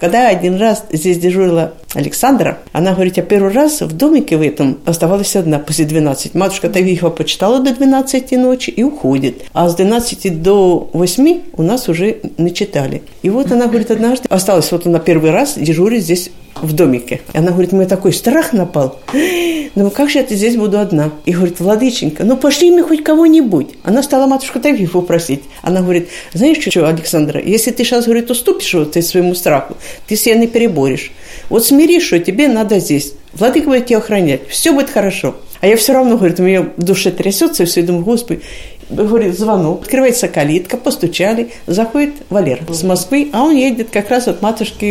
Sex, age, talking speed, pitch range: female, 50-69, 185 wpm, 170-250 Hz